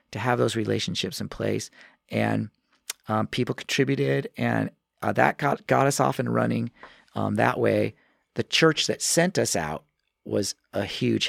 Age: 40-59